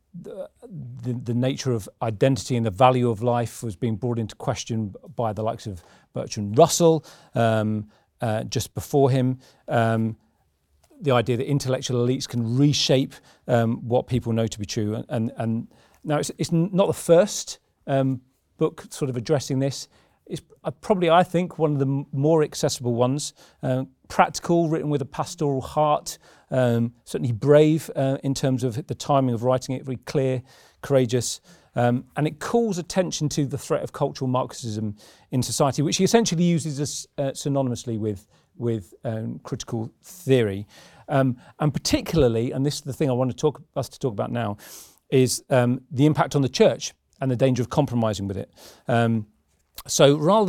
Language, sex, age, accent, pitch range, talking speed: English, male, 40-59, British, 115-150 Hz, 175 wpm